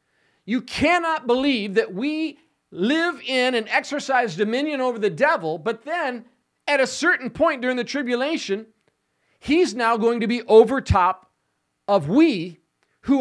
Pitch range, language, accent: 210-295 Hz, English, American